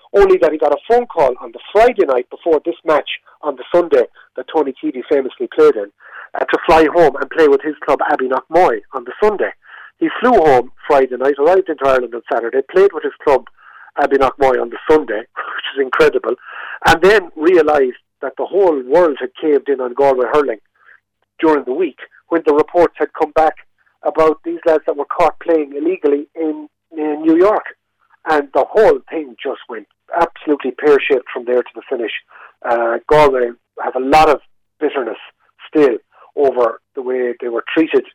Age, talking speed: 50-69, 190 wpm